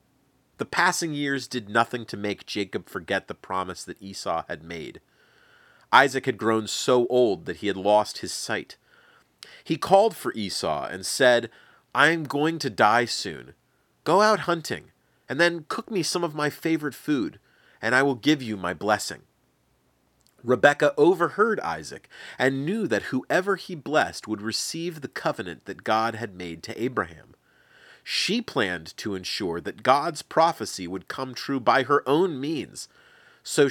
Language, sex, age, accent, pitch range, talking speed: English, male, 30-49, American, 115-165 Hz, 165 wpm